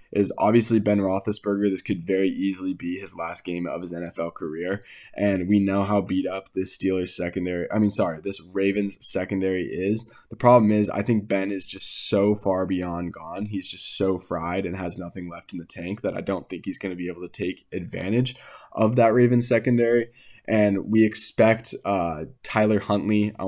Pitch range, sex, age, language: 95-105 Hz, male, 10-29, English